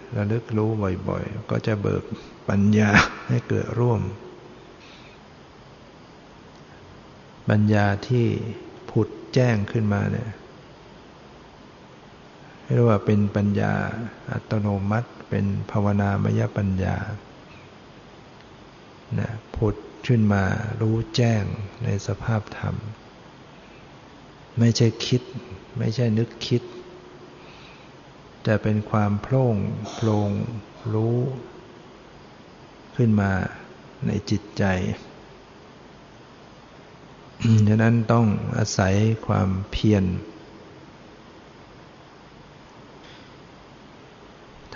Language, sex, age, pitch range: Thai, male, 60-79, 100-115 Hz